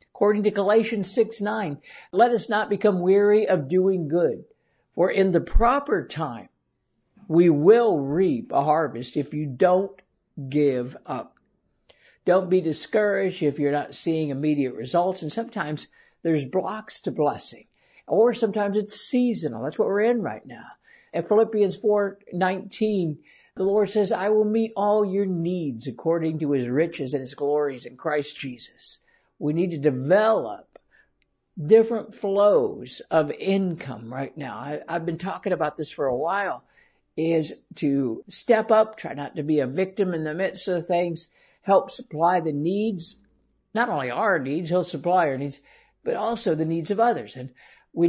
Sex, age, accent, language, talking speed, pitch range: male, 60-79, American, English, 160 wpm, 150-205 Hz